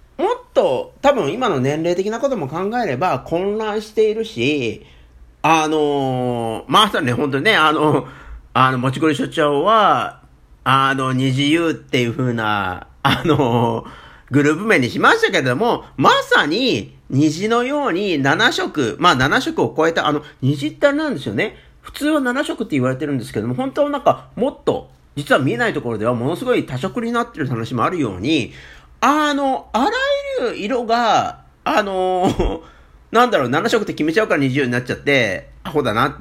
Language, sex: Japanese, male